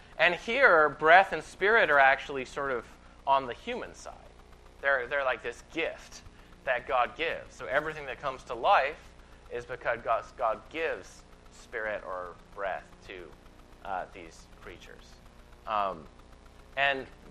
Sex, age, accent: male, 30-49, American